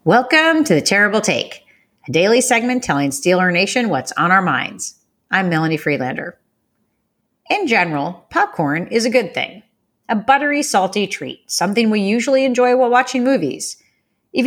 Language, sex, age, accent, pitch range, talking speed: English, female, 40-59, American, 160-245 Hz, 155 wpm